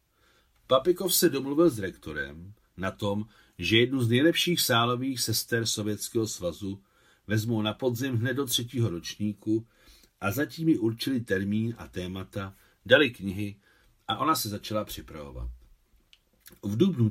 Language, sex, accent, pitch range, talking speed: Czech, male, native, 95-120 Hz, 135 wpm